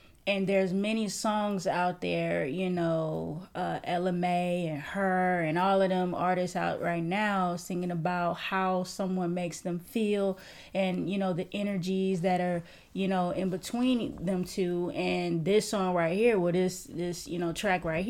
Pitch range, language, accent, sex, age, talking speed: 175-200 Hz, English, American, female, 20-39, 180 wpm